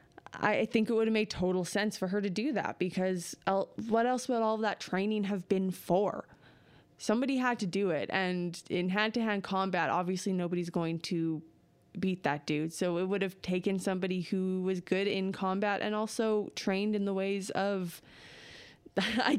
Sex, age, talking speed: female, 20-39, 185 wpm